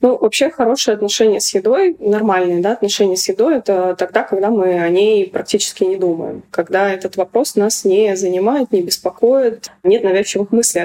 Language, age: Russian, 20-39